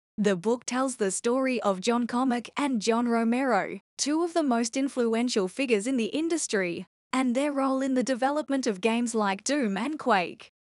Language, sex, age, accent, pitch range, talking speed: English, female, 10-29, Australian, 215-265 Hz, 180 wpm